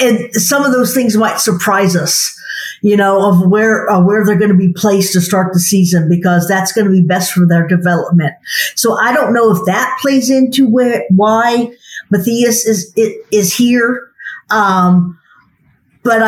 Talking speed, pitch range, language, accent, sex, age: 175 wpm, 190-230 Hz, English, American, female, 50-69